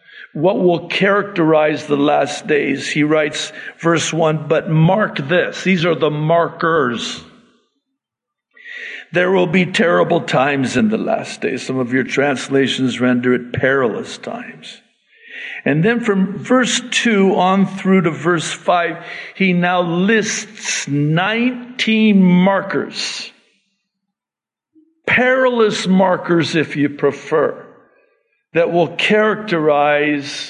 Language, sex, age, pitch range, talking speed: English, male, 50-69, 155-215 Hz, 110 wpm